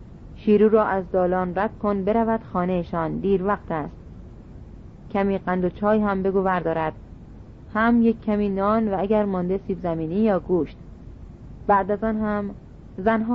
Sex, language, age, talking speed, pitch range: female, Persian, 30-49, 155 wpm, 175-220 Hz